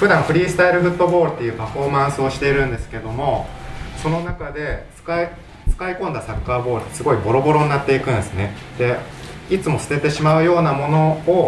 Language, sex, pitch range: Japanese, male, 110-150 Hz